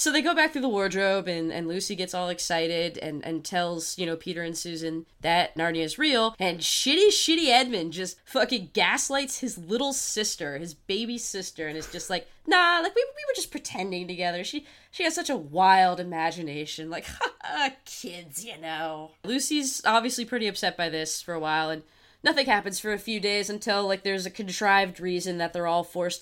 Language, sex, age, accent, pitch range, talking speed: English, female, 20-39, American, 170-250 Hz, 200 wpm